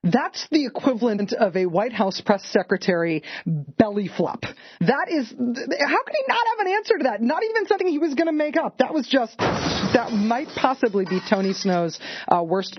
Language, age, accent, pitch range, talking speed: English, 40-59, American, 170-270 Hz, 195 wpm